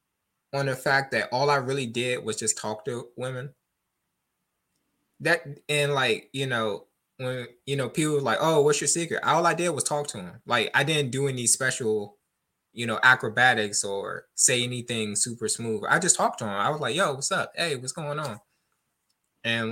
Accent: American